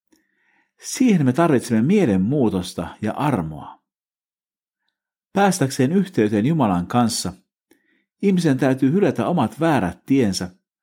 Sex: male